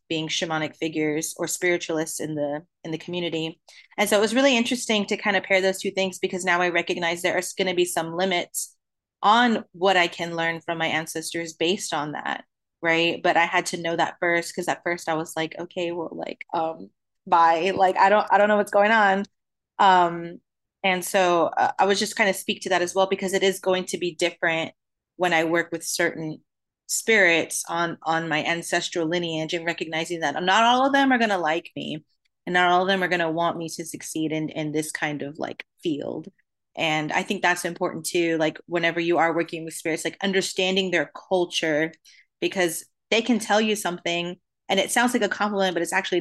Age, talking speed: 30-49, 215 wpm